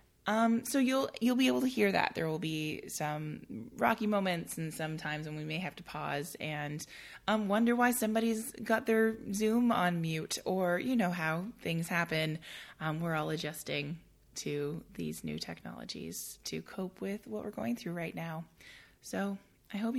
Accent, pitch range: American, 145-195 Hz